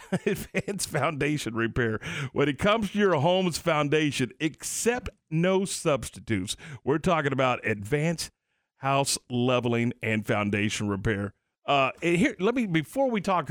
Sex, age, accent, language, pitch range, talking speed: male, 50-69, American, English, 120-165 Hz, 135 wpm